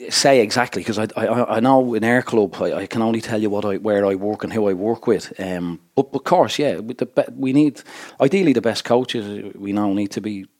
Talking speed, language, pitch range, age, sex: 250 wpm, English, 100-120 Hz, 40-59, male